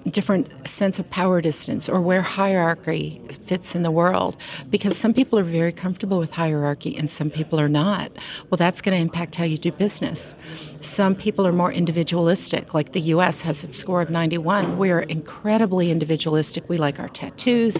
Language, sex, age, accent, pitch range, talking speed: English, female, 50-69, American, 160-190 Hz, 180 wpm